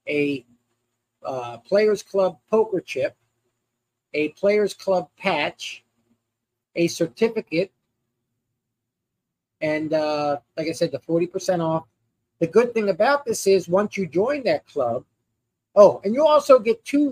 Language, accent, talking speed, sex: English, American, 135 wpm, male